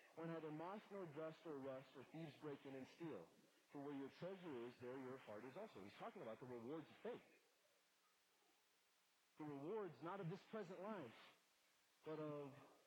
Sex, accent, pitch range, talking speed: male, American, 115-155 Hz, 180 wpm